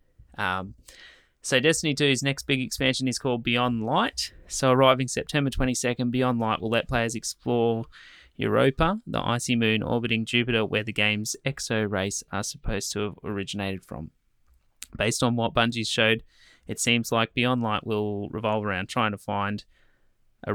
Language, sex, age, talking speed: English, male, 20-39, 160 wpm